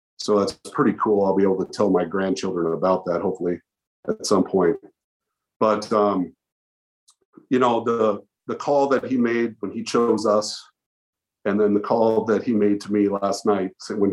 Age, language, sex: 50-69, English, male